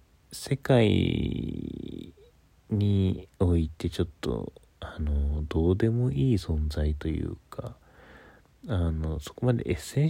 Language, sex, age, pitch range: Japanese, male, 40-59, 75-105 Hz